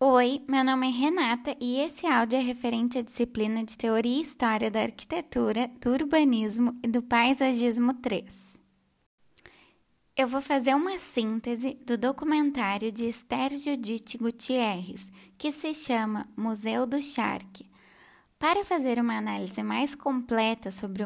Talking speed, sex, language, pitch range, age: 135 wpm, female, Portuguese, 225-265 Hz, 10-29